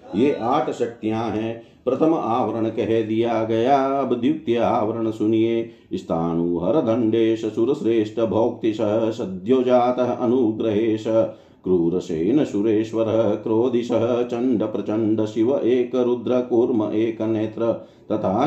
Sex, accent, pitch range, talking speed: male, native, 110-115 Hz, 100 wpm